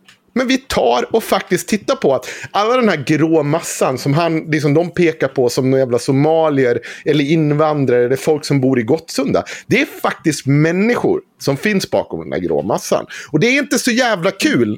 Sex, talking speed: male, 195 wpm